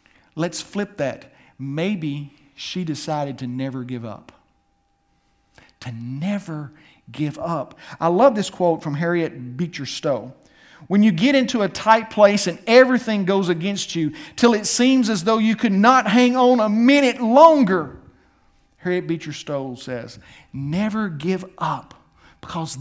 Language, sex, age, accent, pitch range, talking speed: English, male, 50-69, American, 150-225 Hz, 145 wpm